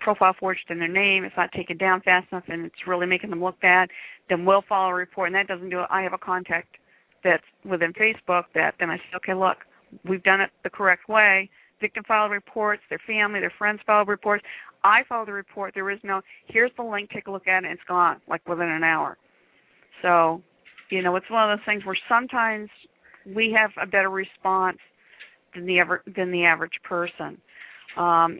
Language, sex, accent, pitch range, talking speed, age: English, female, American, 180-205 Hz, 210 wpm, 50-69